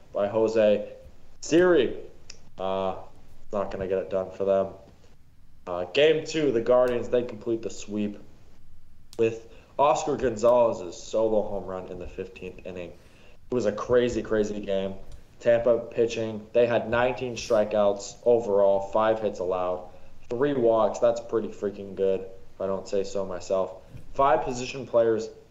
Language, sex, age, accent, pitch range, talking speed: English, male, 20-39, American, 95-115 Hz, 145 wpm